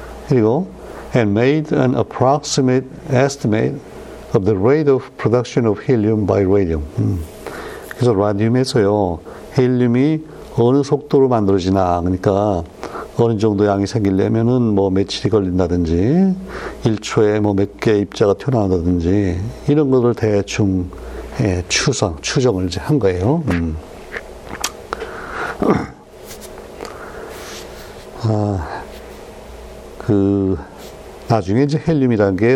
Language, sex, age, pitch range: Korean, male, 60-79, 100-125 Hz